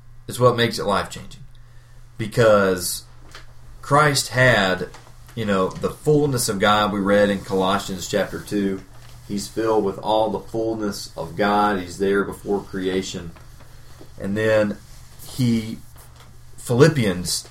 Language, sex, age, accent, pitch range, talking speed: English, male, 40-59, American, 100-120 Hz, 125 wpm